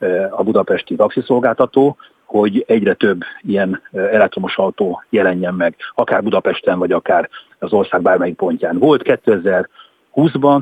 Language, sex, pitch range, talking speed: Hungarian, male, 105-160 Hz, 120 wpm